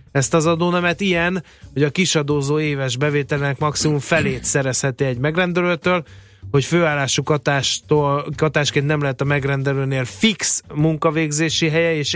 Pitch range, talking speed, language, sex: 135-160 Hz, 130 wpm, Hungarian, male